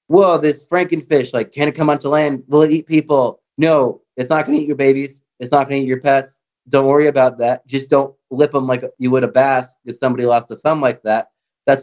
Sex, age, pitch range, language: male, 20-39, 120-145 Hz, English